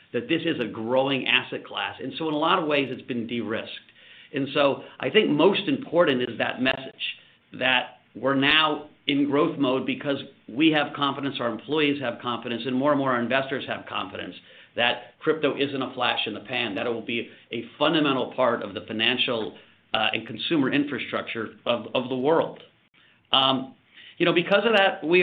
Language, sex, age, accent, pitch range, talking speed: English, male, 50-69, American, 125-150 Hz, 195 wpm